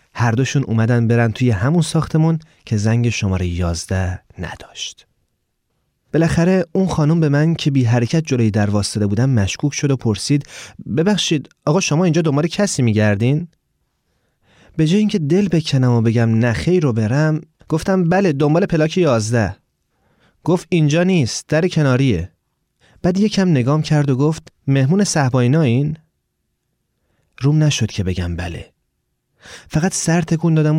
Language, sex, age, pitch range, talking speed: Persian, male, 30-49, 115-155 Hz, 140 wpm